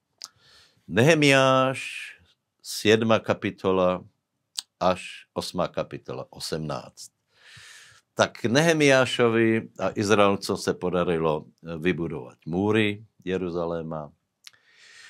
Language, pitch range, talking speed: Slovak, 90-115 Hz, 65 wpm